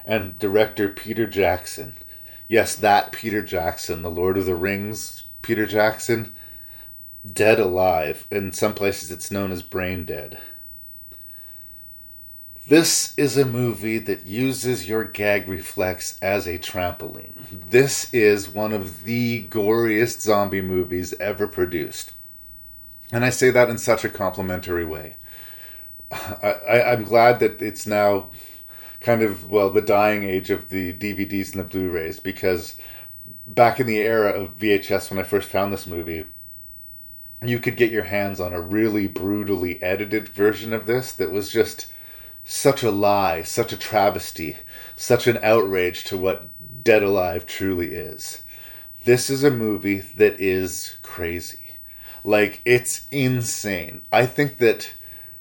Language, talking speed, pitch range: English, 140 wpm, 95-115 Hz